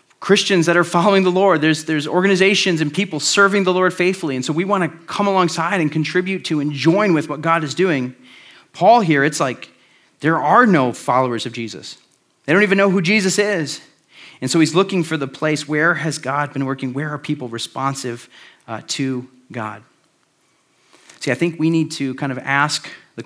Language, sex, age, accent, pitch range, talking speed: English, male, 40-59, American, 130-165 Hz, 200 wpm